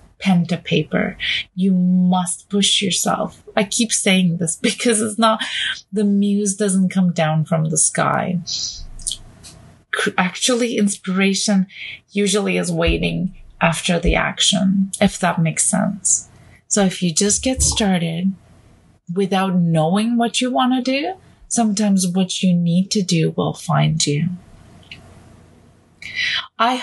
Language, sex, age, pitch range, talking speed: English, female, 30-49, 160-205 Hz, 130 wpm